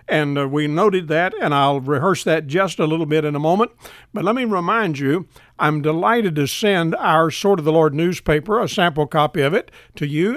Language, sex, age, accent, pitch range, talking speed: English, male, 60-79, American, 145-185 Hz, 220 wpm